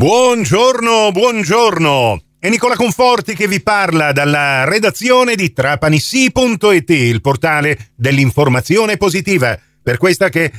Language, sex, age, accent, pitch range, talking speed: Italian, male, 50-69, native, 125-185 Hz, 110 wpm